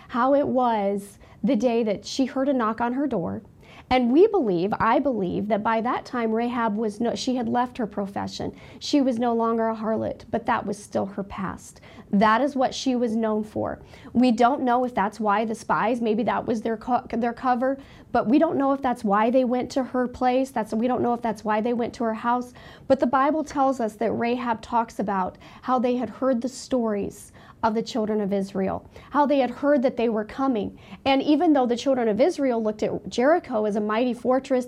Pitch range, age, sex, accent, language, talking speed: 220-260 Hz, 40-59, female, American, English, 225 wpm